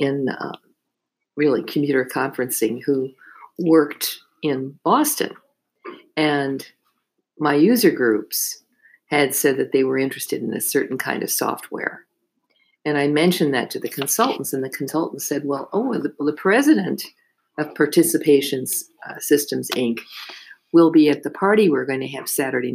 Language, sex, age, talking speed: English, female, 50-69, 150 wpm